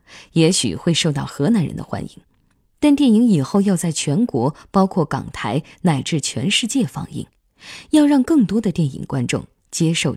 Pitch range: 145-220 Hz